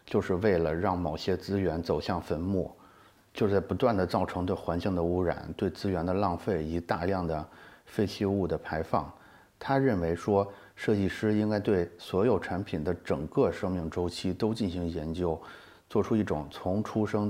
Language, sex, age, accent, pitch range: Chinese, male, 30-49, native, 90-105 Hz